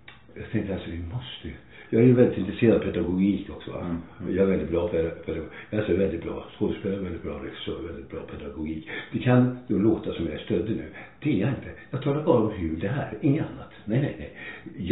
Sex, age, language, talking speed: male, 60-79, Swedish, 265 wpm